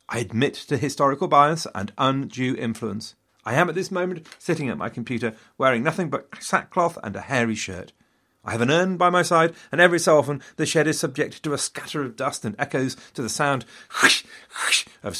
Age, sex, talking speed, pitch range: 40-59, male, 200 wpm, 100-155 Hz